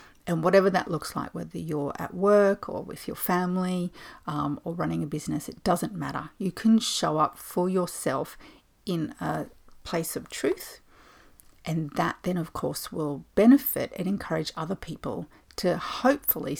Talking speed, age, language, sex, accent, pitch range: 165 wpm, 40-59, English, female, Australian, 165-220 Hz